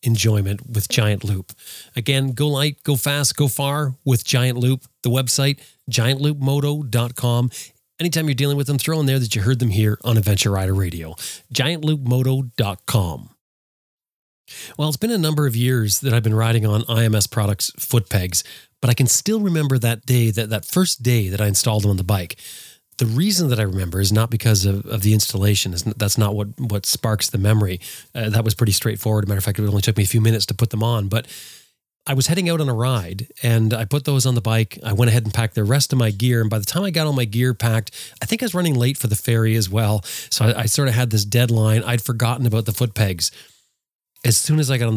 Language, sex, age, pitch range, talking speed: English, male, 30-49, 105-130 Hz, 235 wpm